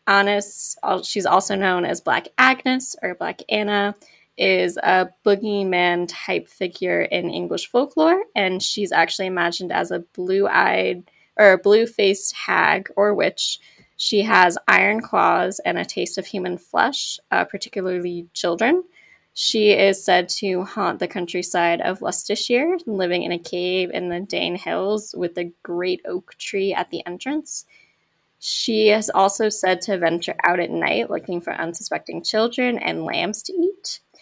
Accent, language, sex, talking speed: American, English, female, 150 wpm